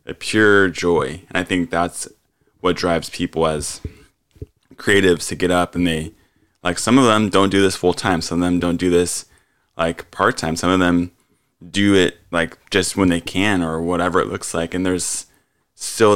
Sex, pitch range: male, 85-95 Hz